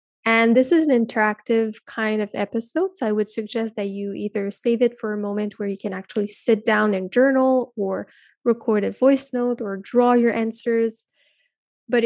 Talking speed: 190 wpm